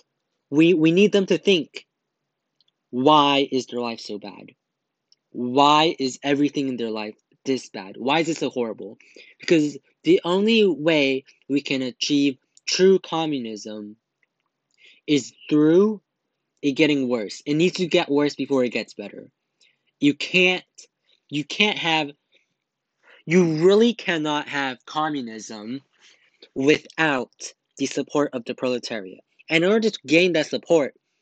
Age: 20-39